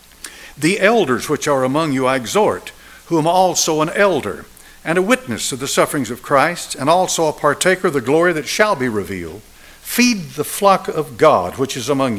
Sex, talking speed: male, 190 wpm